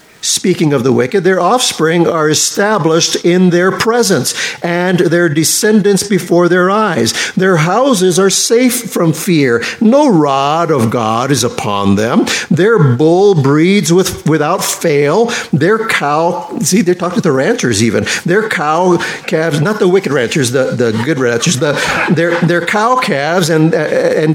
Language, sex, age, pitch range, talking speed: English, male, 50-69, 150-200 Hz, 155 wpm